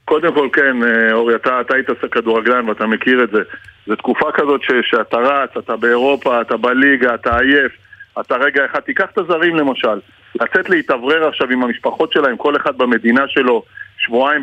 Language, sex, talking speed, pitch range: Hebrew, male, 175 wpm, 125-175 Hz